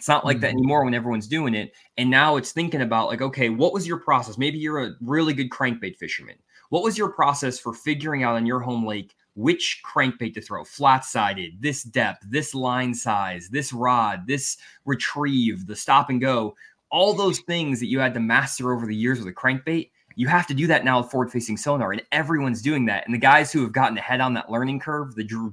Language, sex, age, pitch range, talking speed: English, male, 20-39, 115-145 Hz, 225 wpm